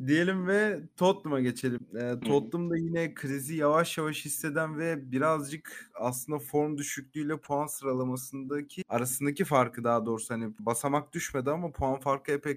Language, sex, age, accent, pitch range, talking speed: Turkish, male, 30-49, native, 125-155 Hz, 140 wpm